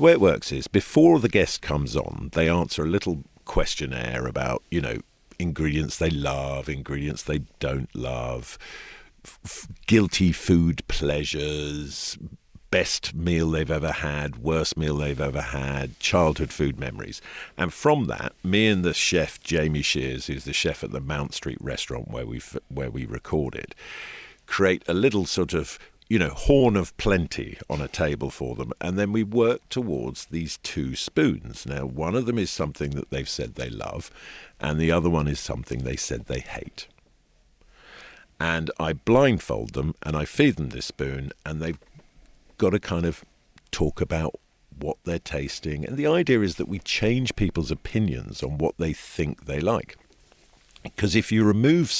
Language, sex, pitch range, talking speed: English, male, 70-90 Hz, 170 wpm